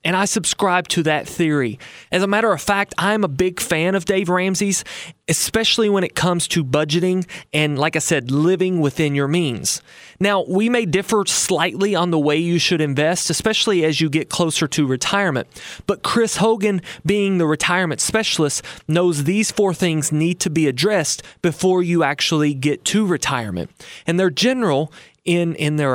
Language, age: English, 30-49